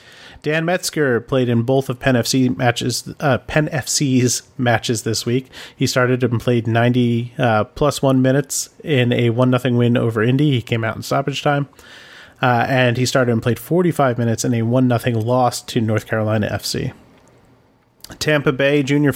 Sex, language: male, English